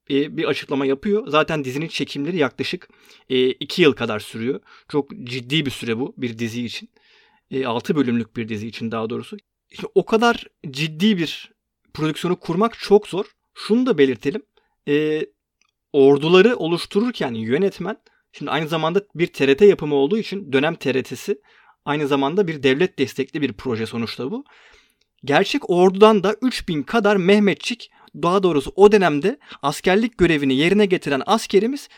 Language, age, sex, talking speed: Turkish, 30-49, male, 145 wpm